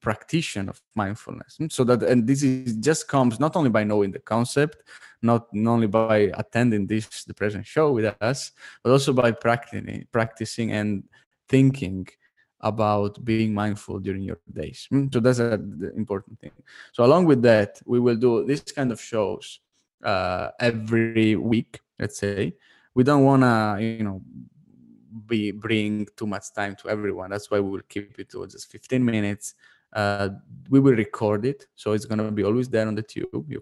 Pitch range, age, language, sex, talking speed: 100-115 Hz, 20-39, English, male, 175 wpm